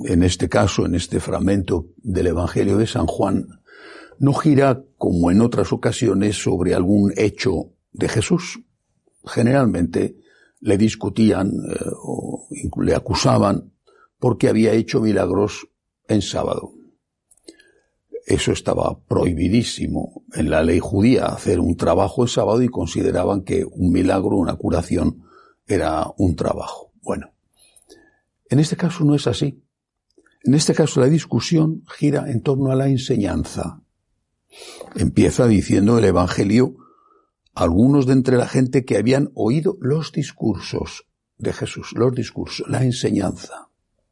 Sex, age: male, 60-79